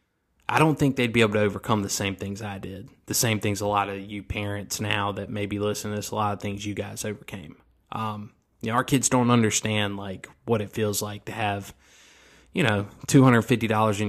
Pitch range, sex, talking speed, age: 100-115 Hz, male, 235 wpm, 20-39